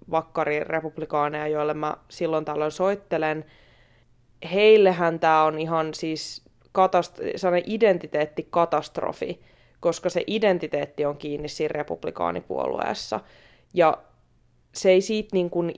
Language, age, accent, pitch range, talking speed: Finnish, 20-39, native, 150-180 Hz, 105 wpm